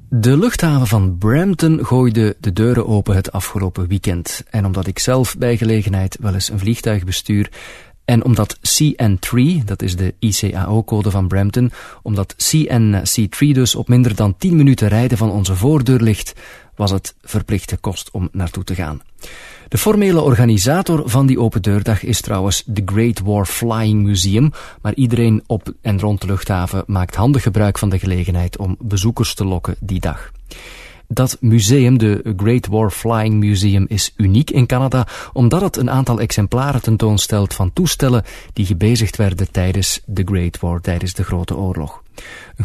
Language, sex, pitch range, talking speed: Dutch, male, 95-120 Hz, 165 wpm